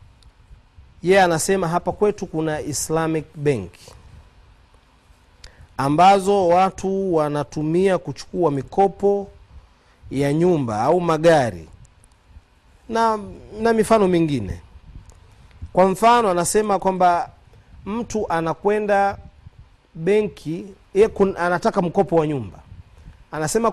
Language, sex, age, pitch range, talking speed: Swahili, male, 40-59, 120-200 Hz, 90 wpm